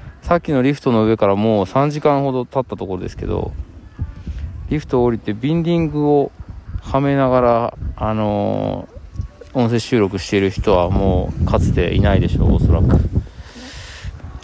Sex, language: male, Japanese